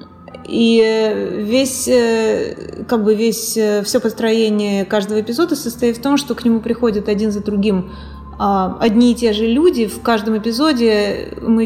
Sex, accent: female, native